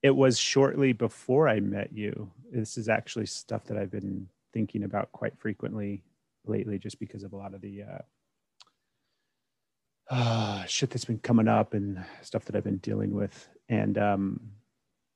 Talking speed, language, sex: 165 wpm, English, male